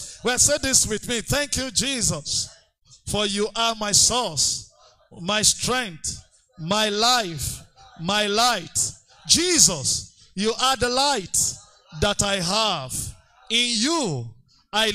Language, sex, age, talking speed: English, male, 50-69, 120 wpm